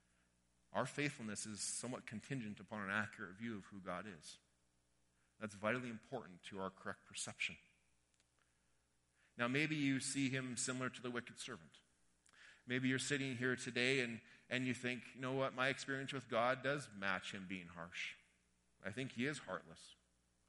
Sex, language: male, English